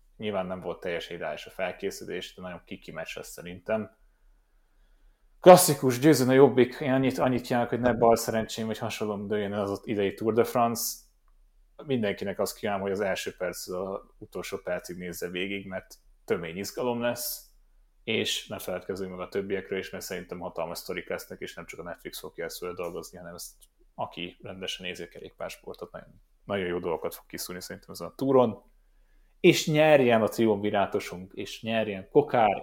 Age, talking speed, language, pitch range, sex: 30-49, 165 wpm, Hungarian, 100-125 Hz, male